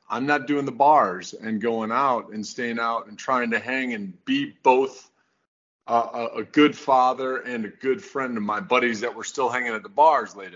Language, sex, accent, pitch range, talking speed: English, male, American, 105-130 Hz, 210 wpm